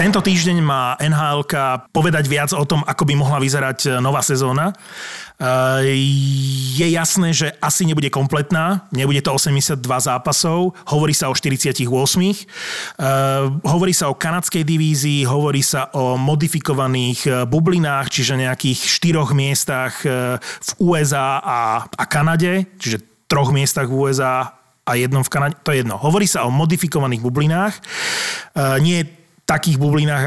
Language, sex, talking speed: Slovak, male, 135 wpm